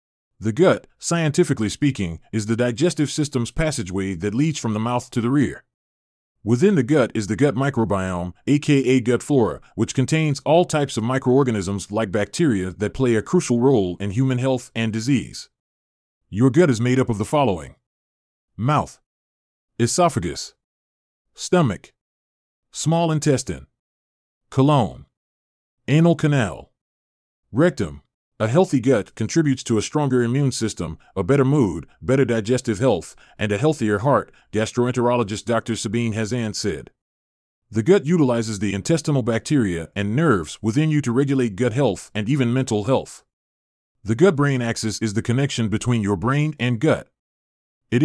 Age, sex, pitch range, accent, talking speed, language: 30-49, male, 100-140 Hz, American, 145 wpm, English